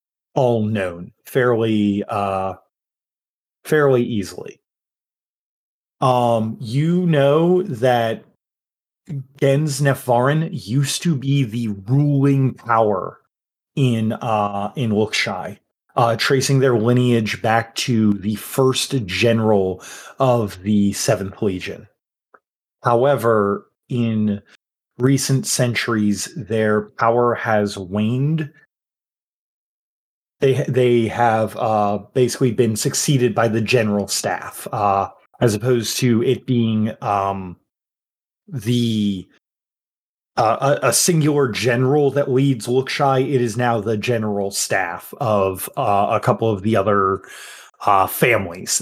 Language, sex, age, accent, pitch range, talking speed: English, male, 30-49, American, 110-135 Hz, 105 wpm